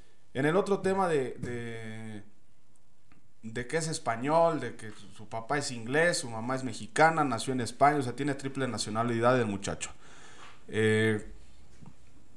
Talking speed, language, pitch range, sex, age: 145 wpm, Spanish, 110-135 Hz, male, 20-39